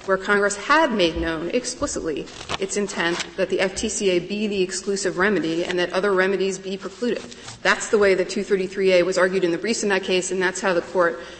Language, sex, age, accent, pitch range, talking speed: English, female, 30-49, American, 175-195 Hz, 205 wpm